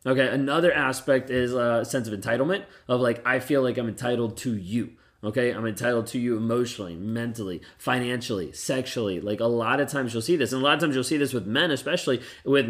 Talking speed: 215 wpm